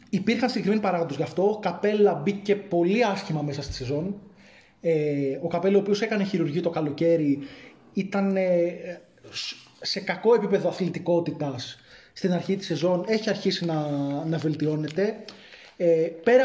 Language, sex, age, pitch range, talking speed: Greek, male, 20-39, 165-195 Hz, 130 wpm